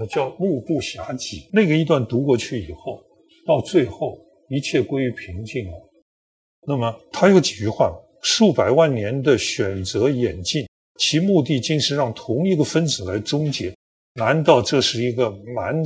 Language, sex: Chinese, male